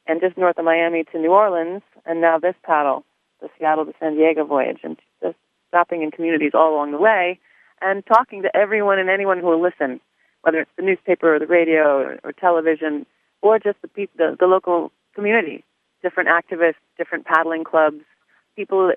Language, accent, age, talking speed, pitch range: English, American, 30-49, 190 wpm, 160-205 Hz